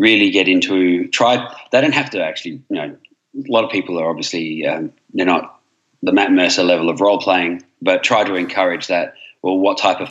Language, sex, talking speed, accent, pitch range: English, male, 210 wpm, Australian, 80-100 Hz